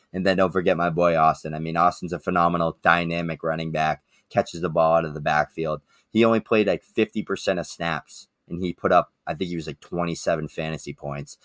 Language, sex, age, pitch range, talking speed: English, male, 20-39, 80-90 Hz, 215 wpm